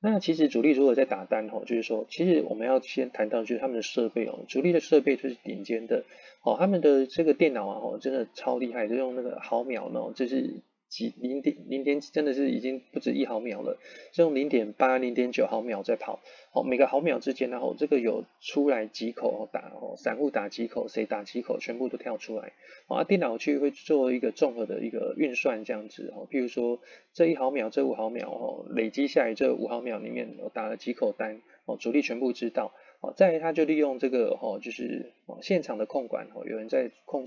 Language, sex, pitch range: Chinese, male, 120-160 Hz